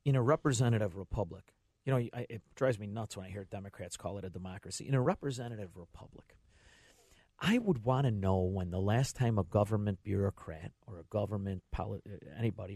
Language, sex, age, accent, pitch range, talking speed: English, male, 50-69, American, 105-150 Hz, 185 wpm